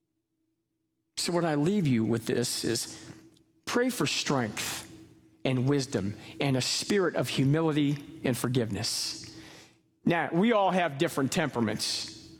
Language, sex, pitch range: English, male, 125-160 Hz